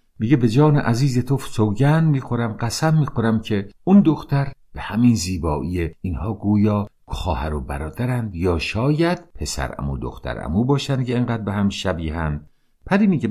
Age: 50-69